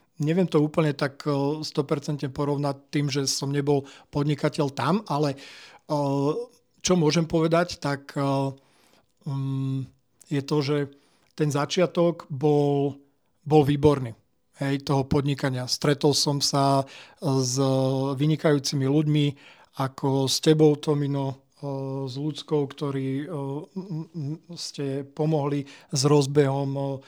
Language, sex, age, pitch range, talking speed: Slovak, male, 50-69, 140-155 Hz, 100 wpm